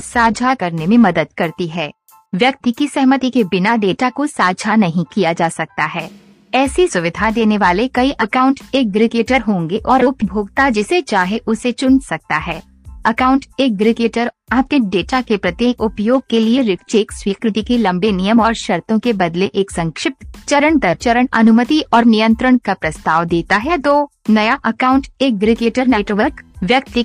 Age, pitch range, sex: 50-69, 195-255 Hz, female